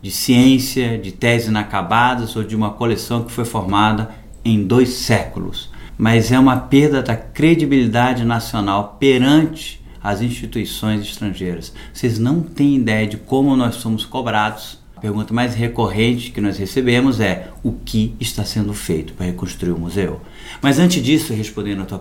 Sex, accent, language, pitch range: male, Brazilian, Portuguese, 100-130 Hz